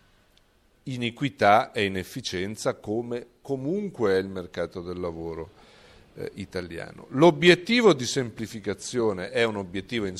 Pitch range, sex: 95-125 Hz, male